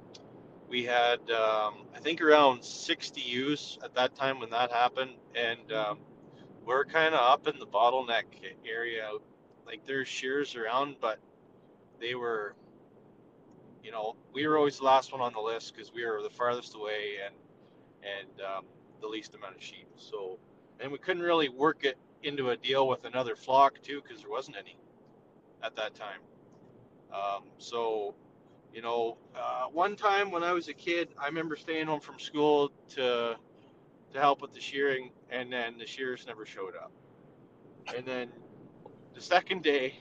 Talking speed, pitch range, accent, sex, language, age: 170 wpm, 120-145 Hz, American, male, English, 30-49